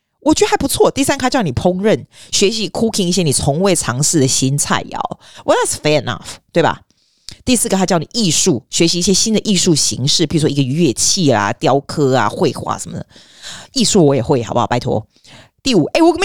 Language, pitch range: Chinese, 135-180 Hz